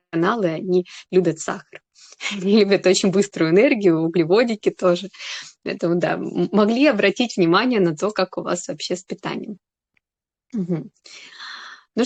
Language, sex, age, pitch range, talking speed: Russian, female, 20-39, 175-215 Hz, 120 wpm